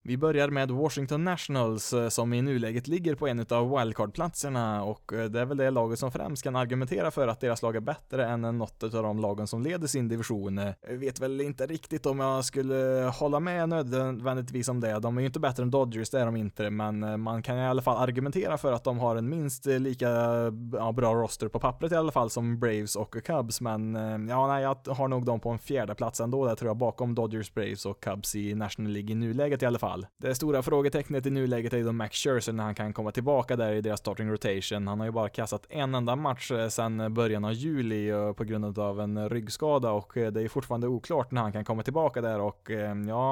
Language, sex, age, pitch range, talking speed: Swedish, male, 20-39, 110-135 Hz, 225 wpm